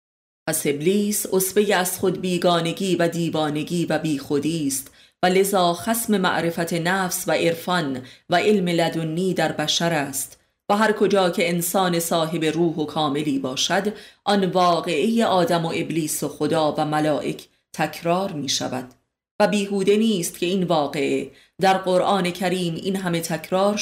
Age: 30-49